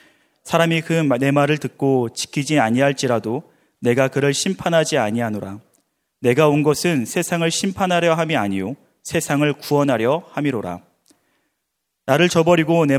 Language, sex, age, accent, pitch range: Korean, male, 30-49, native, 120-165 Hz